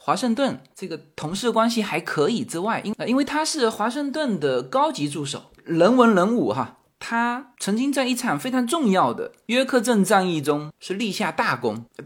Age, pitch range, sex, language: 20-39, 155-240 Hz, male, Chinese